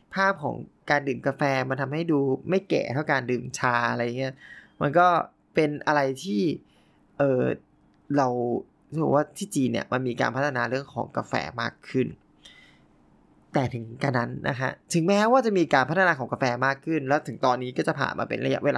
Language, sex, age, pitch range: Thai, male, 20-39, 130-160 Hz